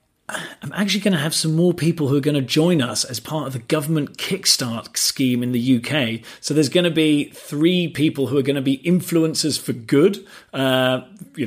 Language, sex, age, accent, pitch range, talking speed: English, male, 40-59, British, 125-150 Hz, 215 wpm